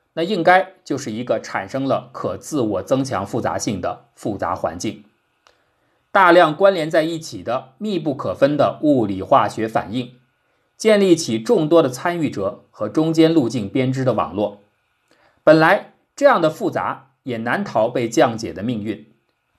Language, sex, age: Chinese, male, 50-69